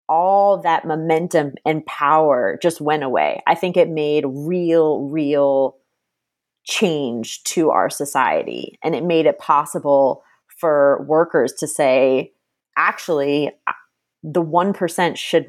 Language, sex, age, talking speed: English, female, 30-49, 120 wpm